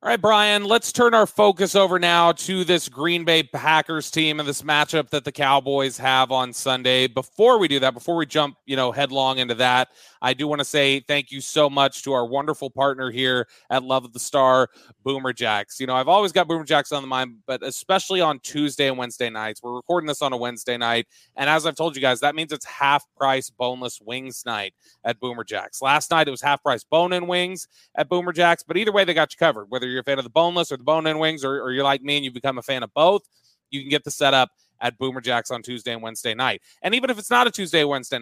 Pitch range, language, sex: 130-170 Hz, English, male